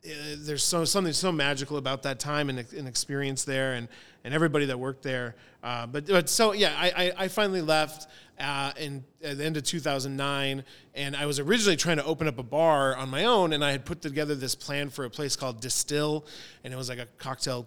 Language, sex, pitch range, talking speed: English, male, 135-155 Hz, 230 wpm